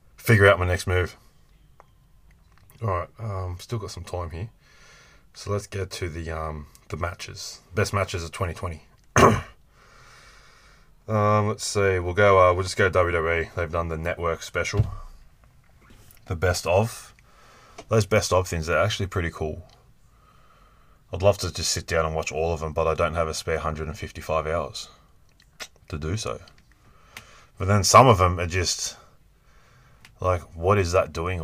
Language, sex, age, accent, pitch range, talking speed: English, male, 20-39, Australian, 80-100 Hz, 170 wpm